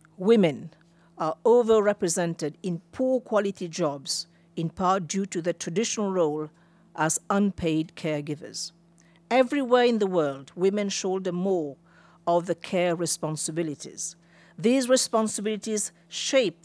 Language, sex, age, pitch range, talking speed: English, female, 50-69, 170-210 Hz, 110 wpm